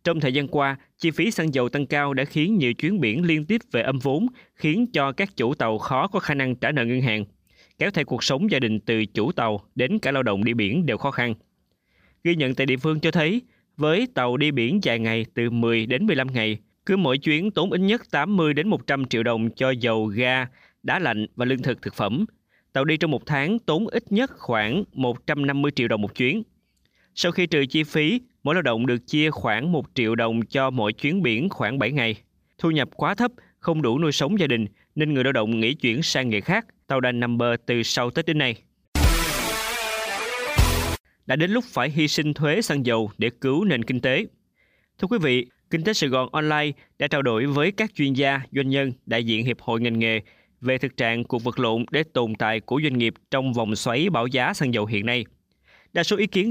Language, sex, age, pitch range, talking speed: Vietnamese, male, 20-39, 115-155 Hz, 225 wpm